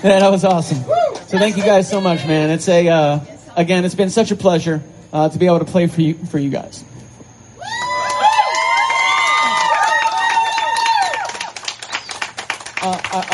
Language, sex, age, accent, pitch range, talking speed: English, male, 30-49, American, 155-190 Hz, 145 wpm